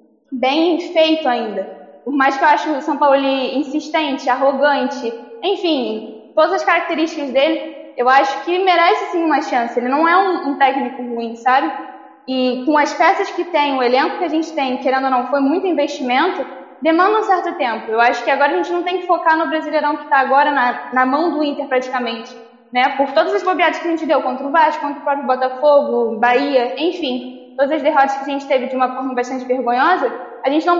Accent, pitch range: Brazilian, 255-320 Hz